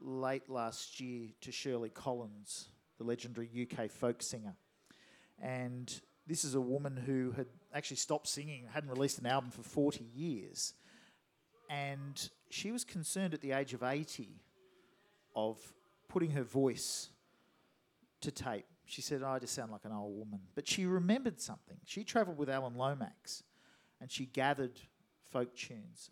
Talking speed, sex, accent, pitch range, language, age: 150 wpm, male, Australian, 120-150 Hz, English, 50-69